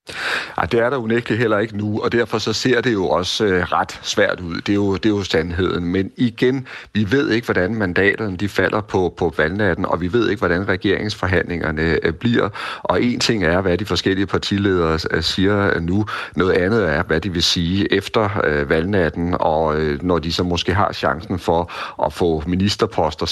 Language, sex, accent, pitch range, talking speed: Danish, male, native, 80-100 Hz, 190 wpm